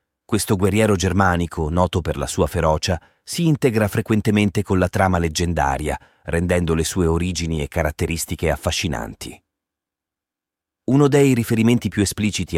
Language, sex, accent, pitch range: Italian, male, native, 80-105 Hz